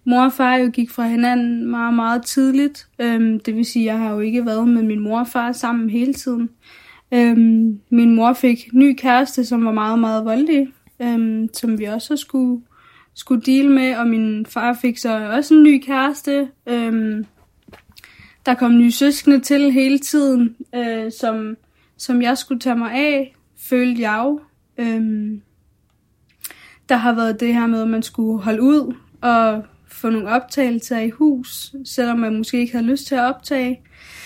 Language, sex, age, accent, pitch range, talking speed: Danish, female, 20-39, native, 230-260 Hz, 180 wpm